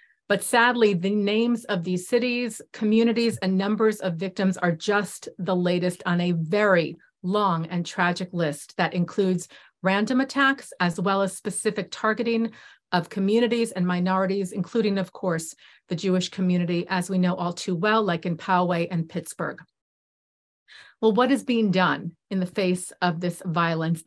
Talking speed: 160 wpm